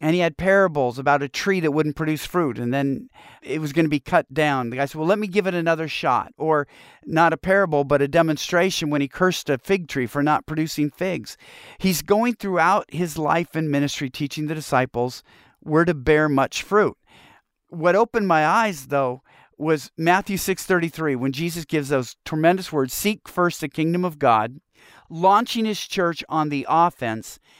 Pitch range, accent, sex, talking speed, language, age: 145-185 Hz, American, male, 190 wpm, English, 50-69